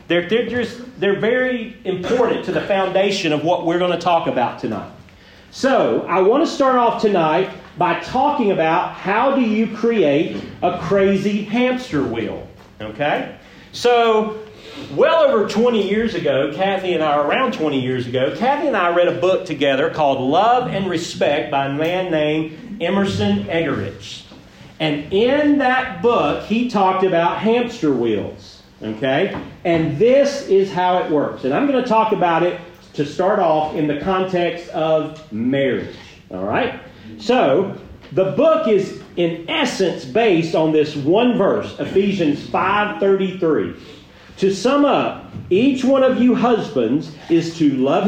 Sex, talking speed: male, 150 wpm